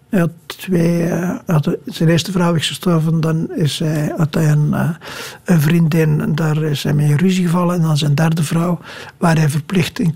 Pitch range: 160-190 Hz